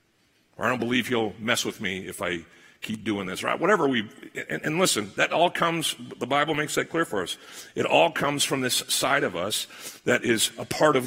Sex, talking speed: male, 230 wpm